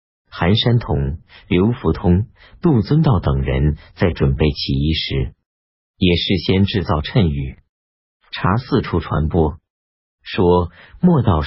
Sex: male